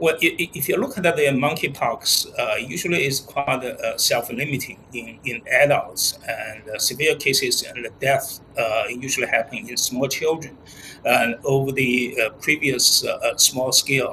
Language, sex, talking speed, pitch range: English, male, 150 wpm, 120-145 Hz